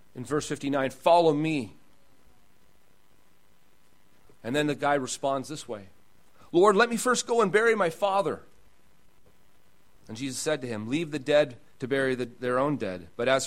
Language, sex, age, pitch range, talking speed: English, male, 40-59, 110-155 Hz, 160 wpm